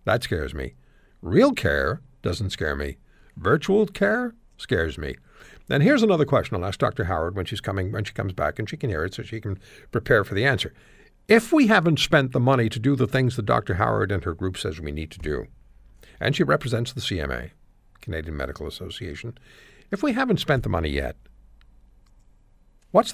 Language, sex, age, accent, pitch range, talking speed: English, male, 60-79, American, 90-140 Hz, 190 wpm